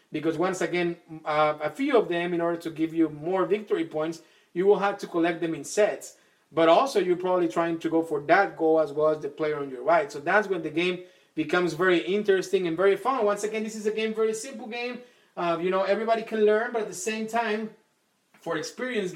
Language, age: English, 30-49